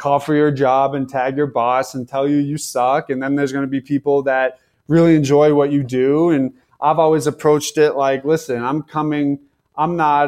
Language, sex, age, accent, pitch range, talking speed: English, male, 20-39, American, 130-150 Hz, 215 wpm